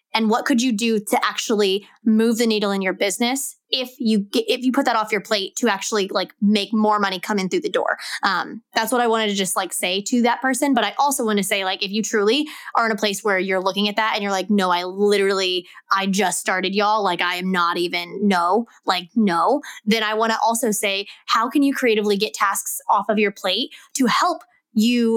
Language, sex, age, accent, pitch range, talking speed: English, female, 20-39, American, 200-240 Hz, 240 wpm